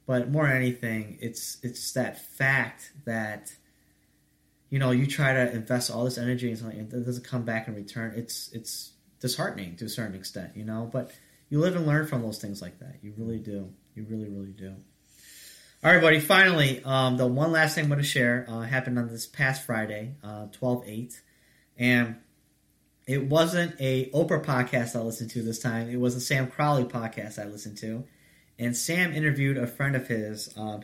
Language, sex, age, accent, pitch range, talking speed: English, male, 30-49, American, 115-135 Hz, 195 wpm